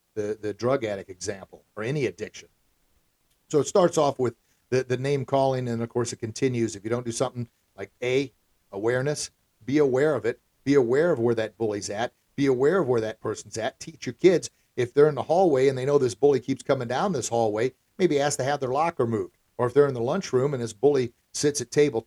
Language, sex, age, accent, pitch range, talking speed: English, male, 50-69, American, 115-155 Hz, 230 wpm